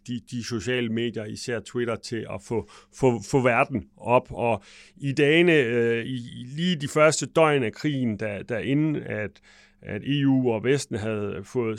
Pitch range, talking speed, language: 110-130 Hz, 155 wpm, English